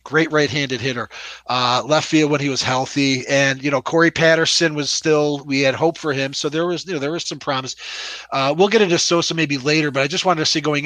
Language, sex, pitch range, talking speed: English, male, 130-160 Hz, 250 wpm